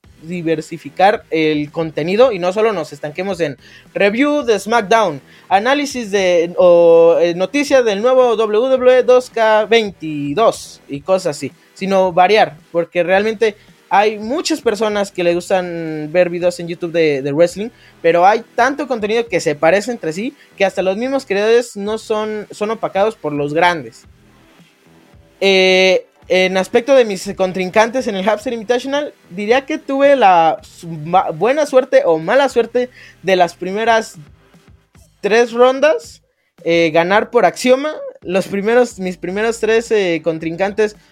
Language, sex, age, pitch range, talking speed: Spanish, male, 20-39, 165-225 Hz, 135 wpm